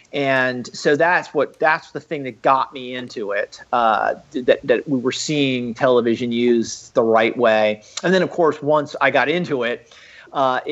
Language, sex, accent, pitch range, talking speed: English, male, American, 125-150 Hz, 185 wpm